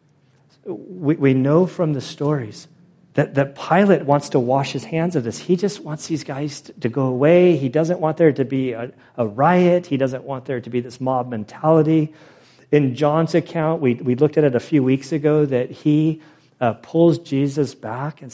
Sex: male